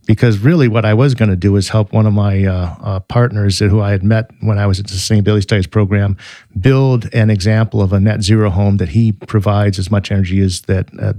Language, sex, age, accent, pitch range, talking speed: English, male, 50-69, American, 100-115 Hz, 240 wpm